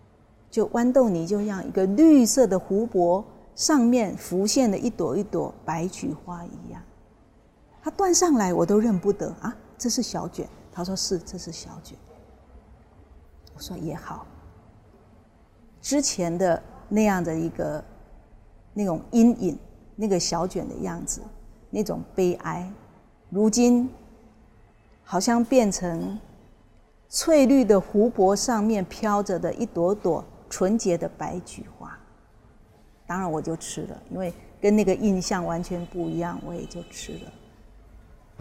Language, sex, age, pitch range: Chinese, female, 40-59, 170-230 Hz